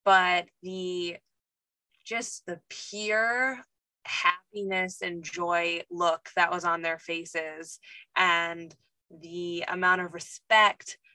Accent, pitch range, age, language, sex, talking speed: American, 175-205 Hz, 20-39, English, female, 100 wpm